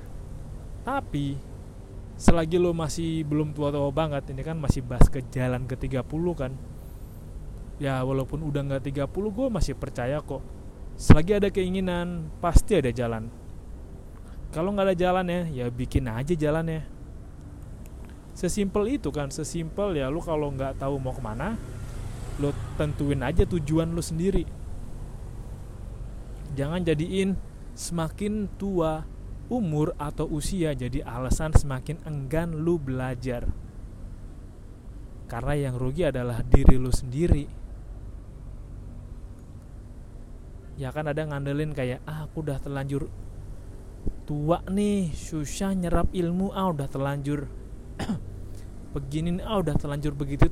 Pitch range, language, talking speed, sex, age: 120-160 Hz, Indonesian, 120 wpm, male, 20-39